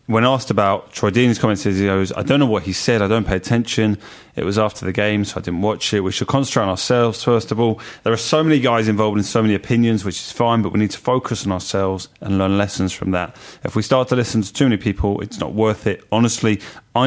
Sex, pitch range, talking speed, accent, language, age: male, 100-120 Hz, 265 wpm, British, English, 30-49